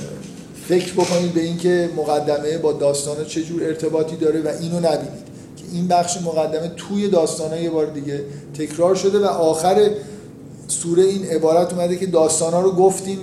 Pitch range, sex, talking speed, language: 145-165 Hz, male, 155 wpm, Persian